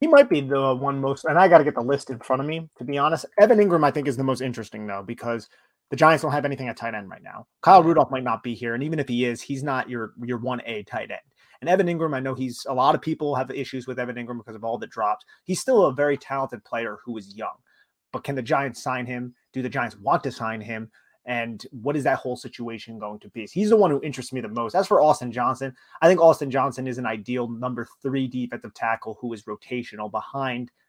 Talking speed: 265 wpm